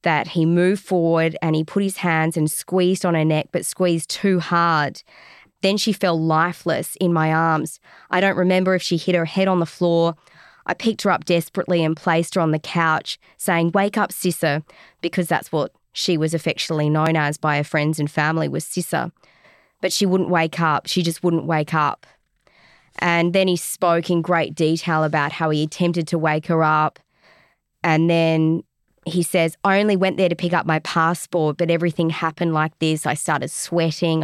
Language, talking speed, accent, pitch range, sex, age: English, 195 wpm, Australian, 155-175 Hz, female, 20-39